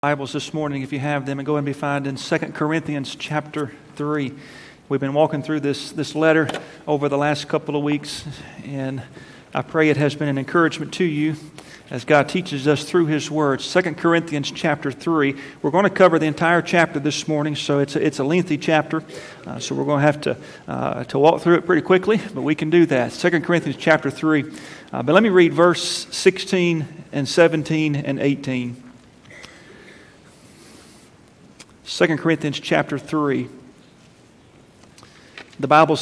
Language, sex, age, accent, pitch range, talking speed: English, male, 40-59, American, 140-165 Hz, 180 wpm